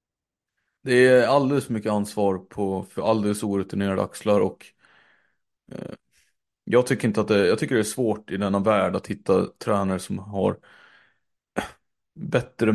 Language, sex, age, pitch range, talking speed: Swedish, male, 30-49, 100-110 Hz, 150 wpm